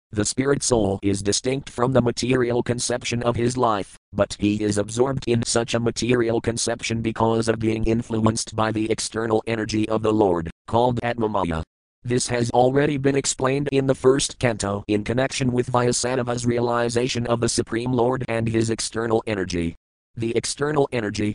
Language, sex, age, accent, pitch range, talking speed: English, male, 50-69, American, 105-120 Hz, 165 wpm